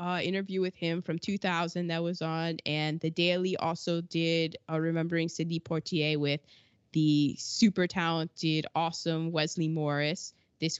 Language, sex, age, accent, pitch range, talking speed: English, female, 20-39, American, 165-230 Hz, 150 wpm